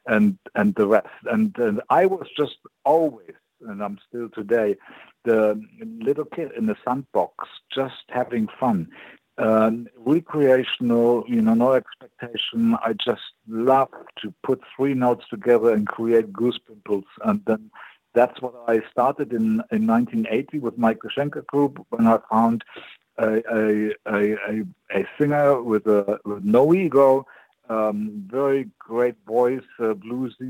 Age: 60-79